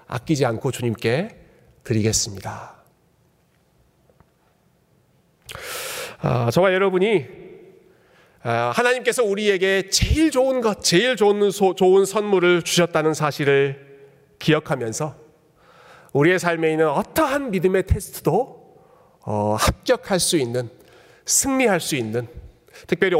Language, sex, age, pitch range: Korean, male, 40-59, 140-190 Hz